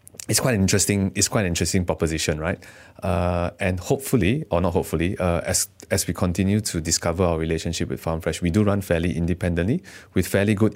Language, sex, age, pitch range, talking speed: English, male, 20-39, 85-95 Hz, 190 wpm